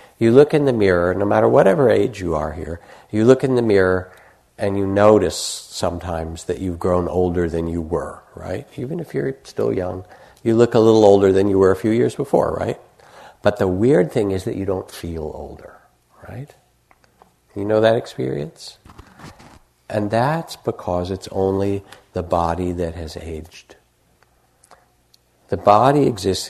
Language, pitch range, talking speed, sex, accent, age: English, 90-110 Hz, 170 wpm, male, American, 60-79